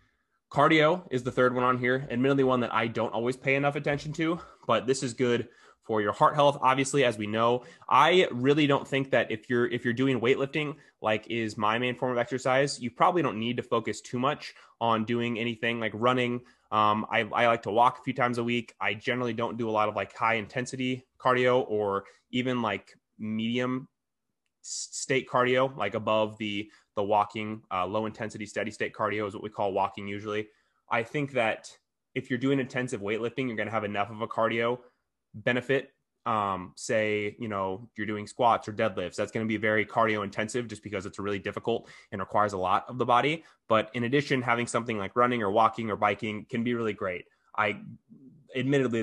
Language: English